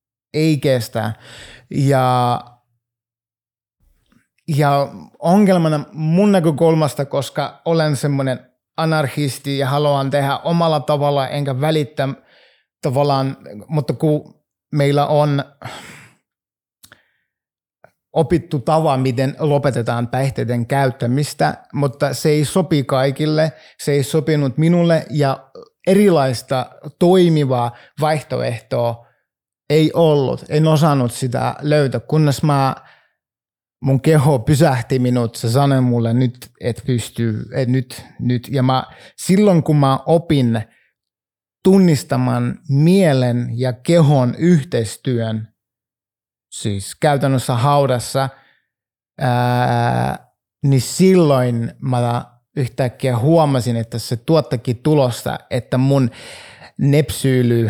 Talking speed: 95 wpm